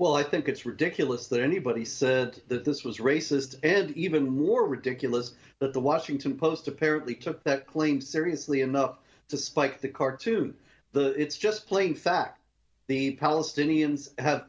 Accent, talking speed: American, 155 wpm